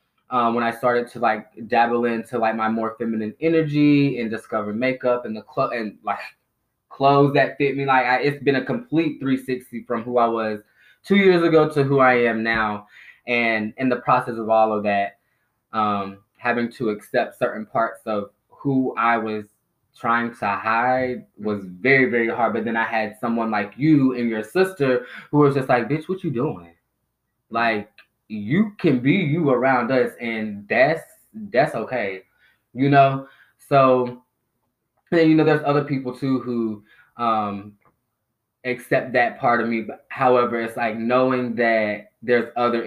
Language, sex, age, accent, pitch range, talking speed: English, male, 20-39, American, 110-130 Hz, 170 wpm